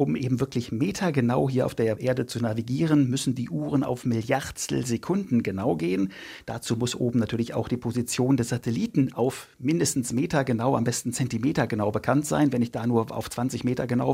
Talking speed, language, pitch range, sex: 180 wpm, German, 120-140 Hz, male